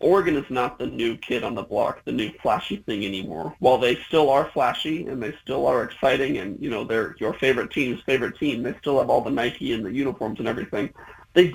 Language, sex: English, male